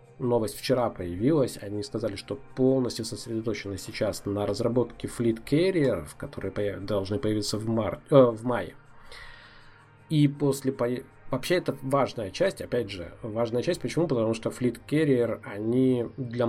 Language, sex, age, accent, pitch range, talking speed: Russian, male, 20-39, native, 105-130 Hz, 140 wpm